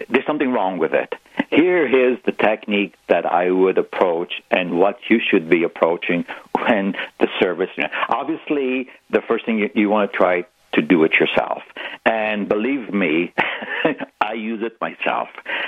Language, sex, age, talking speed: English, male, 60-79, 160 wpm